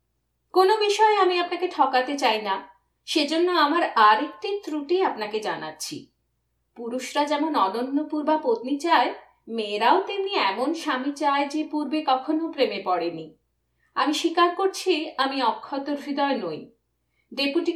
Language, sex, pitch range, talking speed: Bengali, female, 260-350 Hz, 125 wpm